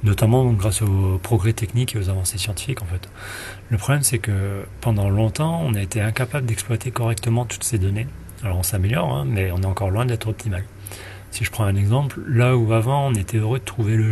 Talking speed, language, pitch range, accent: 215 wpm, French, 100-120 Hz, French